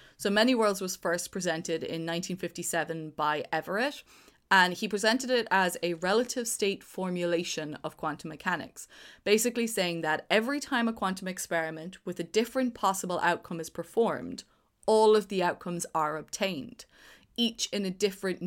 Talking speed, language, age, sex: 155 wpm, English, 20-39, female